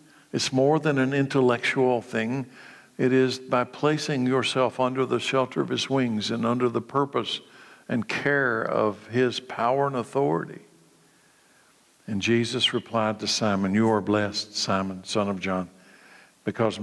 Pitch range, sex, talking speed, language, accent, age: 115-135 Hz, male, 145 wpm, English, American, 60-79